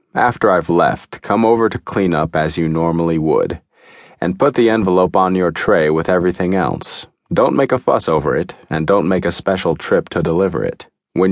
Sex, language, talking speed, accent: male, English, 200 wpm, American